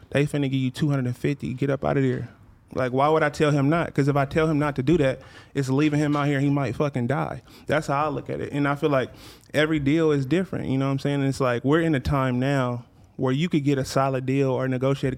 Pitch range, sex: 125-145 Hz, male